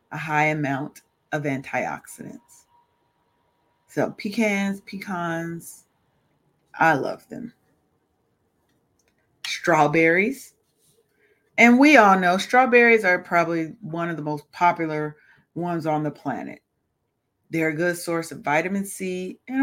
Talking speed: 110 wpm